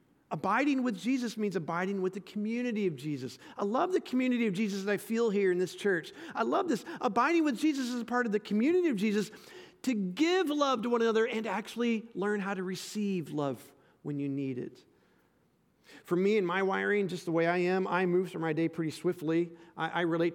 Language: English